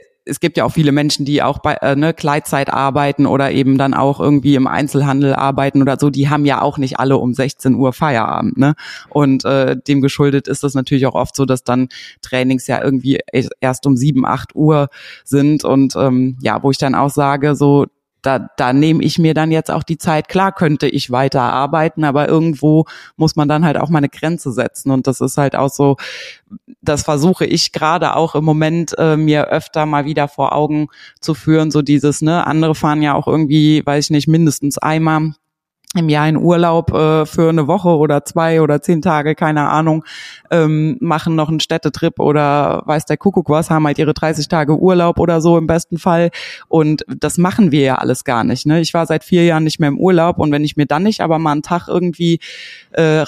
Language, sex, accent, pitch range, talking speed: German, female, German, 140-160 Hz, 210 wpm